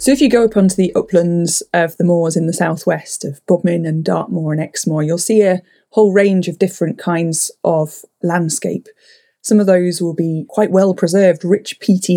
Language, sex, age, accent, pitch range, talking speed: English, female, 20-39, British, 165-200 Hz, 195 wpm